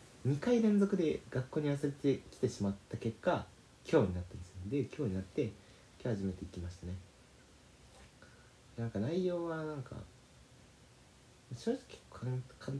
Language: Japanese